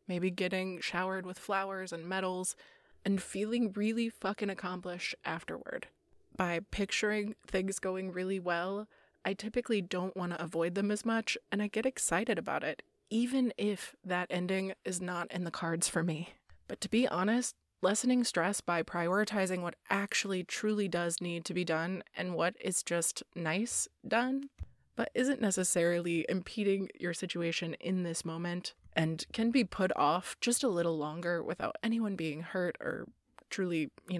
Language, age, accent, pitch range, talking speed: English, 20-39, American, 175-210 Hz, 160 wpm